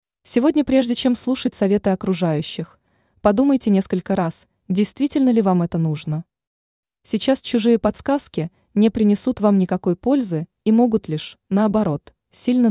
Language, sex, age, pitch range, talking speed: Russian, female, 20-39, 175-235 Hz, 125 wpm